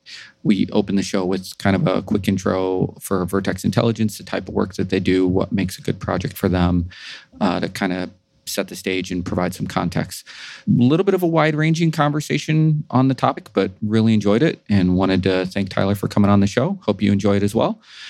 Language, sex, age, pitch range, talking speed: English, male, 30-49, 100-130 Hz, 230 wpm